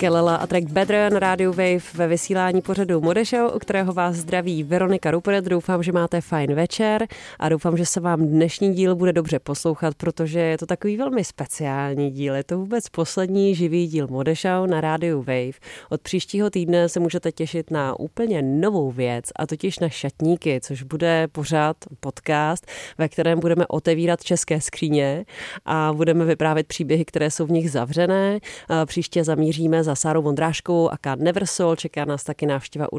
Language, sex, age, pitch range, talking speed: Czech, female, 30-49, 145-175 Hz, 170 wpm